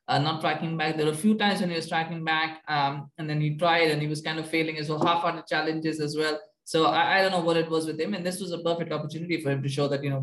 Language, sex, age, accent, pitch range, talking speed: English, male, 20-39, Indian, 145-170 Hz, 330 wpm